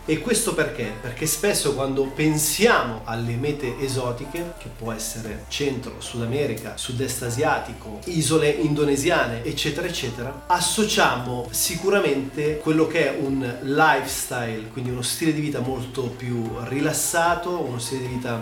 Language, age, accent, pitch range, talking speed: Italian, 30-49, native, 120-155 Hz, 135 wpm